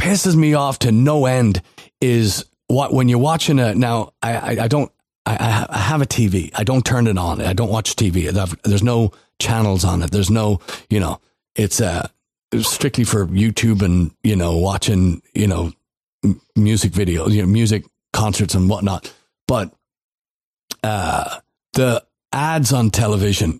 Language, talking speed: English, 165 wpm